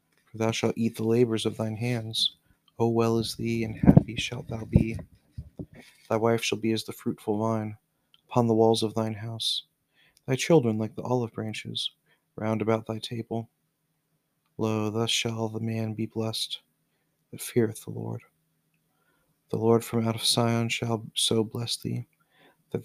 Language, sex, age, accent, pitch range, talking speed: English, male, 40-59, American, 115-125 Hz, 165 wpm